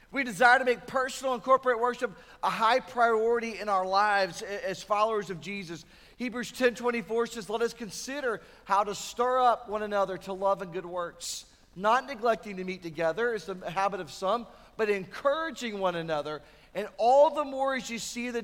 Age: 40-59